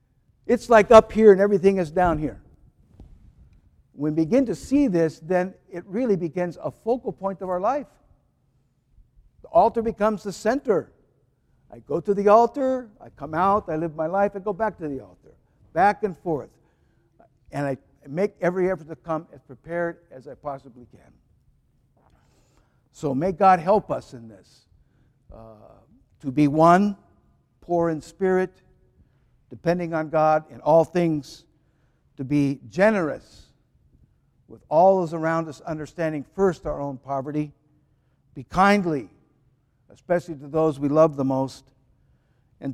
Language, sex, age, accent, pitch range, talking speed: English, male, 60-79, American, 135-185 Hz, 150 wpm